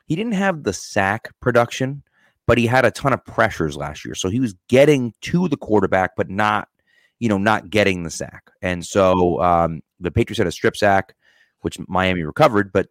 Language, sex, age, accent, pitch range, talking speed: English, male, 30-49, American, 85-115 Hz, 200 wpm